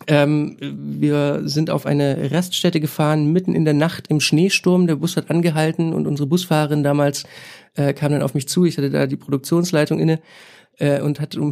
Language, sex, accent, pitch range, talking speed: German, male, German, 145-175 Hz, 195 wpm